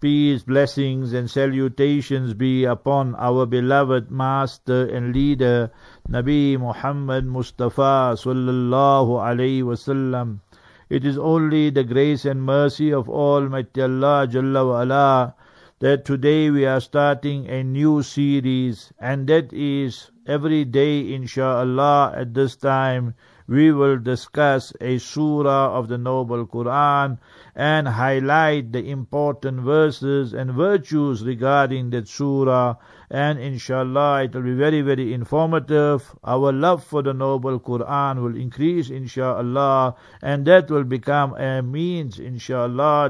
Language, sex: English, male